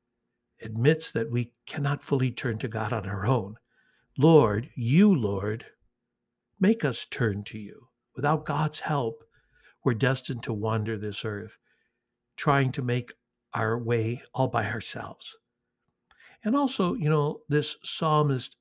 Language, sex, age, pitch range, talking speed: English, male, 60-79, 115-145 Hz, 135 wpm